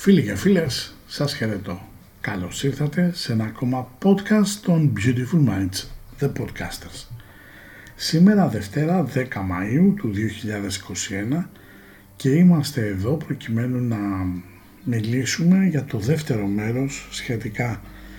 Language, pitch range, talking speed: Greek, 100-140 Hz, 110 wpm